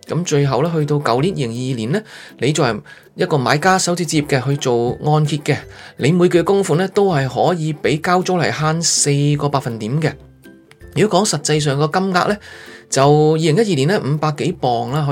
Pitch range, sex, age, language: 130-175 Hz, male, 20-39, Chinese